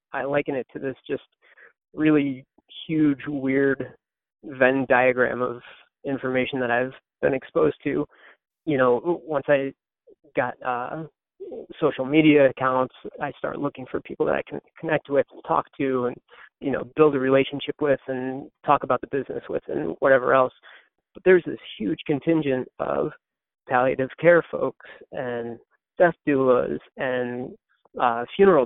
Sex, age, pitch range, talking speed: male, 30-49, 130-150 Hz, 145 wpm